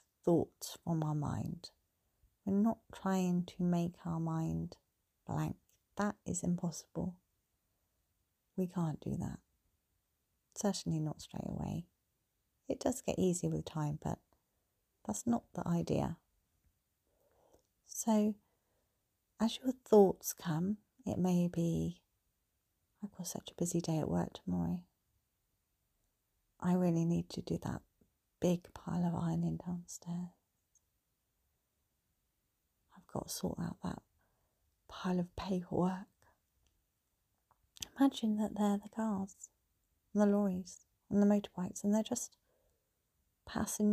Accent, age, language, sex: British, 40-59, English, female